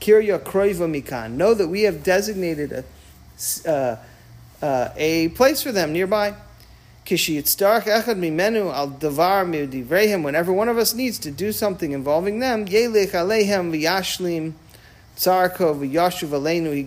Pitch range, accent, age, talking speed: 145-200 Hz, American, 40-59, 85 wpm